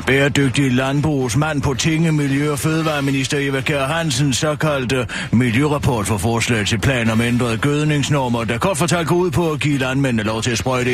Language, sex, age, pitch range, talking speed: Danish, male, 40-59, 115-160 Hz, 170 wpm